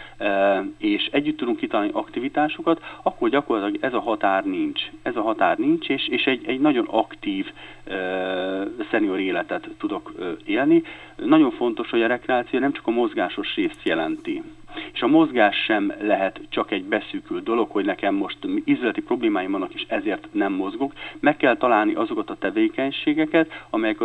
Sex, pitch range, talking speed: male, 300-340 Hz, 160 wpm